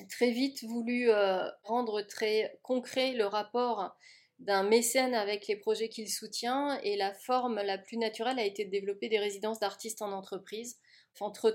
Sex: female